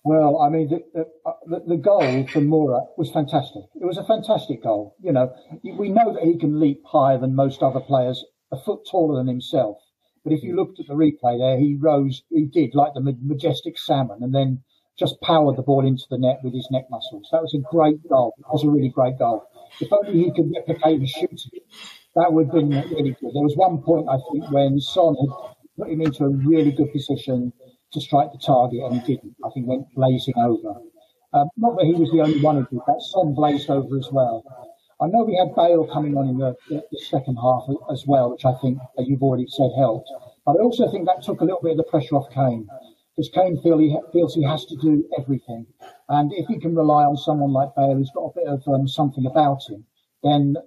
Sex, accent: male, British